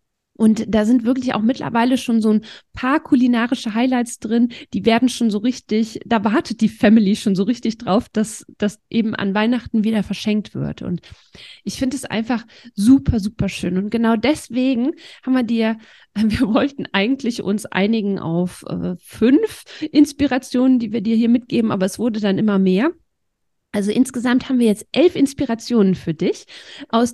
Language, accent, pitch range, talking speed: German, German, 210-255 Hz, 170 wpm